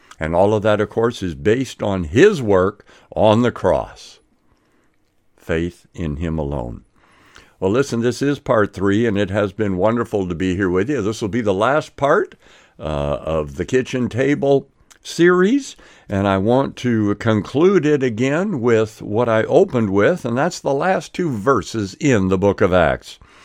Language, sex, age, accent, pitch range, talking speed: English, male, 60-79, American, 105-145 Hz, 175 wpm